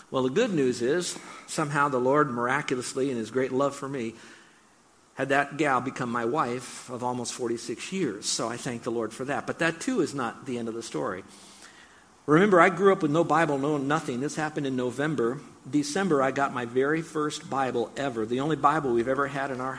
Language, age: English, 50-69